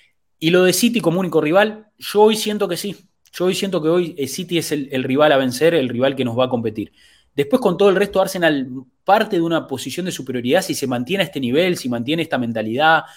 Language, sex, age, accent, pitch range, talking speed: English, male, 20-39, Argentinian, 125-175 Hz, 240 wpm